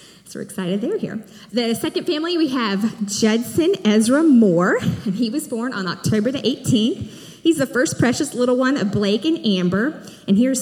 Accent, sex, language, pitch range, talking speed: American, female, English, 200-265 Hz, 185 wpm